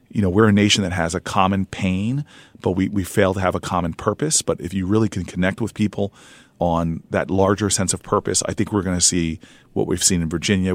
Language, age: English, 40-59